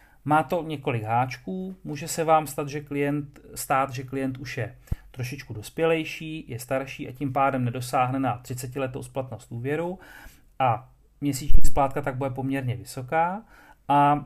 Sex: male